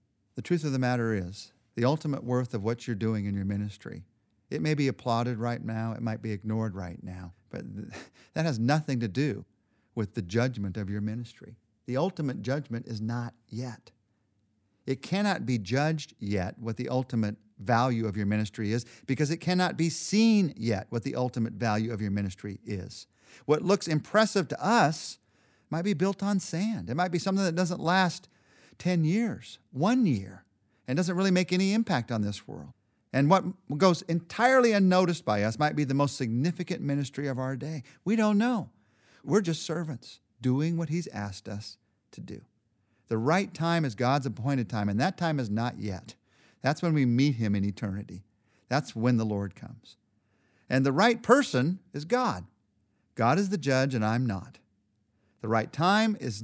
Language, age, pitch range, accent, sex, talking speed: English, 50-69, 110-165 Hz, American, male, 185 wpm